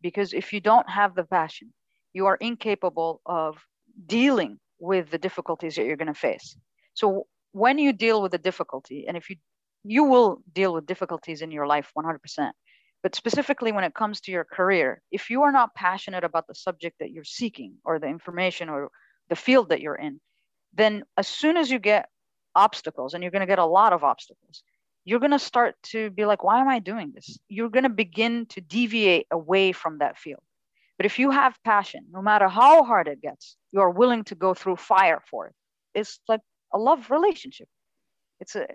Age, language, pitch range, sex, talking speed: 40-59, English, 175-235 Hz, female, 200 wpm